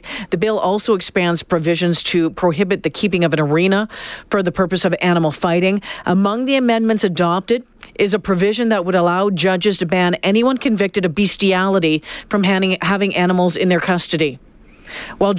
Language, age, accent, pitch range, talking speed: English, 40-59, American, 180-225 Hz, 165 wpm